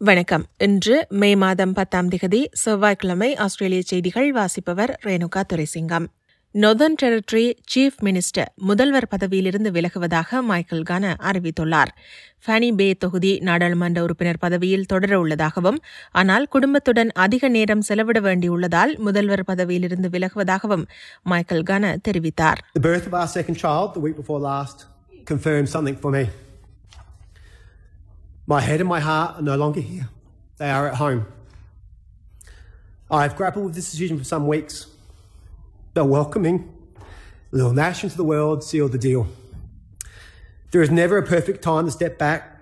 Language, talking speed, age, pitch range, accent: Tamil, 115 wpm, 30-49, 145-200 Hz, native